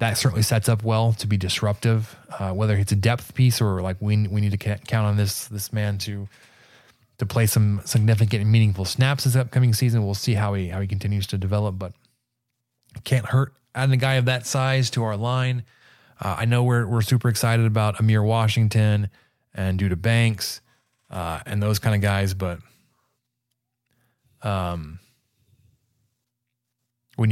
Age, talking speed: 20-39, 175 wpm